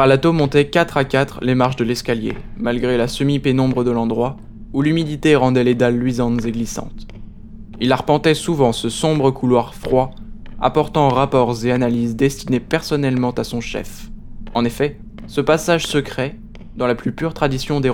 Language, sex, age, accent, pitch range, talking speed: French, male, 20-39, French, 120-140 Hz, 165 wpm